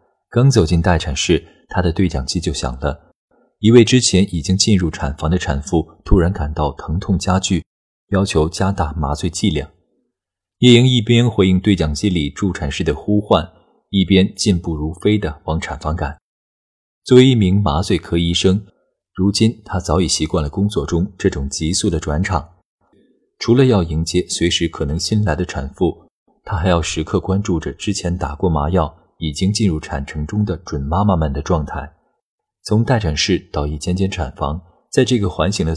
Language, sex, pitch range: Chinese, male, 80-100 Hz